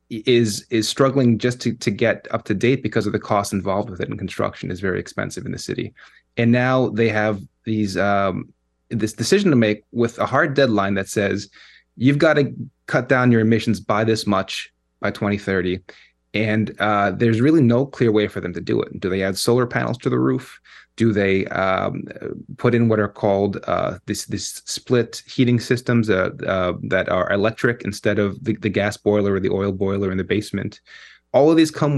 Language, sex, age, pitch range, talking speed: English, male, 20-39, 100-125 Hz, 205 wpm